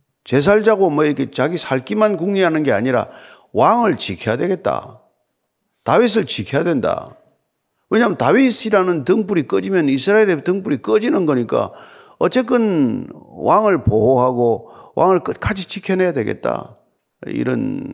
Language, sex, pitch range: Korean, male, 130-195 Hz